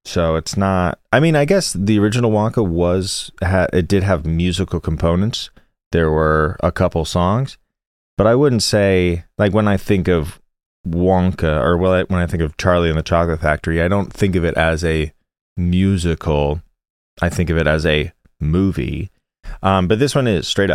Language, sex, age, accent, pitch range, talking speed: English, male, 30-49, American, 80-95 Hz, 185 wpm